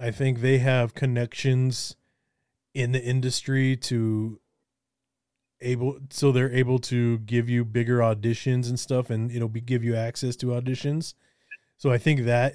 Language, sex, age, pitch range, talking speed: English, male, 20-39, 120-135 Hz, 155 wpm